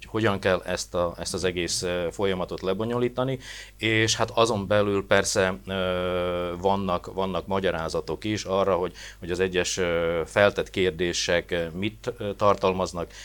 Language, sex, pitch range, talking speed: Hungarian, male, 90-100 Hz, 120 wpm